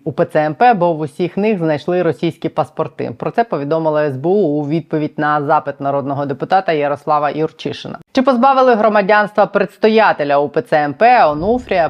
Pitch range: 150-195 Hz